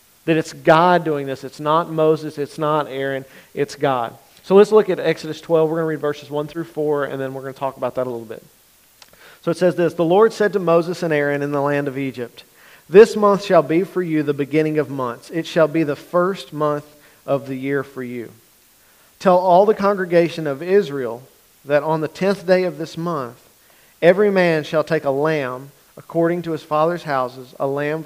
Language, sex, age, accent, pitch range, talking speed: English, male, 40-59, American, 140-170 Hz, 220 wpm